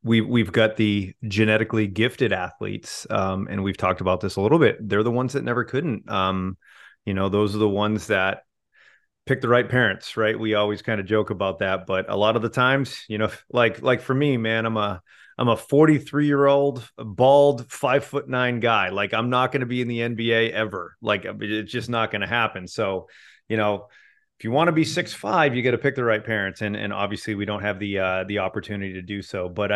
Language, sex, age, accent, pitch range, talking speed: English, male, 30-49, American, 100-125 Hz, 230 wpm